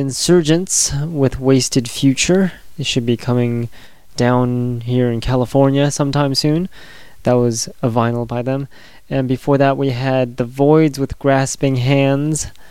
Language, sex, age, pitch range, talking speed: English, male, 20-39, 120-140 Hz, 140 wpm